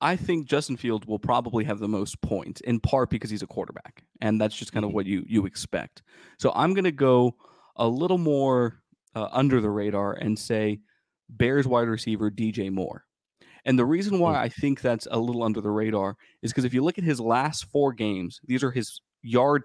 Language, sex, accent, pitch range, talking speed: English, male, American, 110-135 Hz, 215 wpm